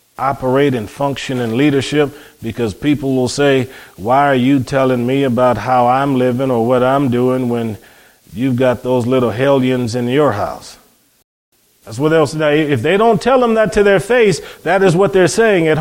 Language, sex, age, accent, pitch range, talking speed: English, male, 40-59, American, 130-165 Hz, 190 wpm